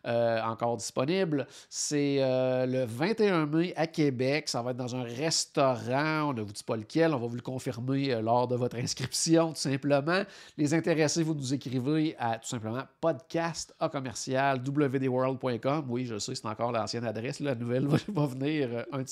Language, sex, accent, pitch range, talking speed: French, male, Canadian, 120-155 Hz, 185 wpm